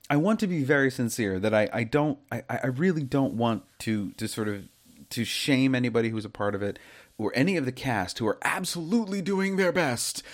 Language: English